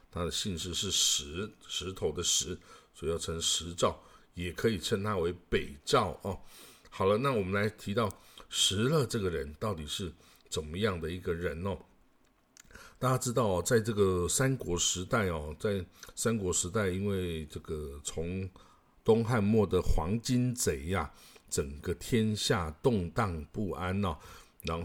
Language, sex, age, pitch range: Chinese, male, 60-79, 85-115 Hz